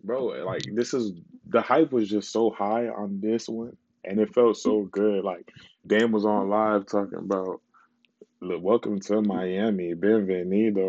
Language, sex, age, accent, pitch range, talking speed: English, male, 20-39, American, 100-130 Hz, 160 wpm